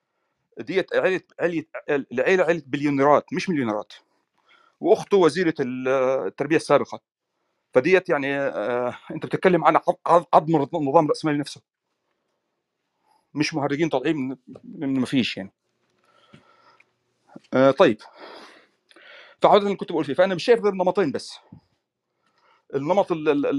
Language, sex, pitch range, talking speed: Arabic, male, 145-195 Hz, 100 wpm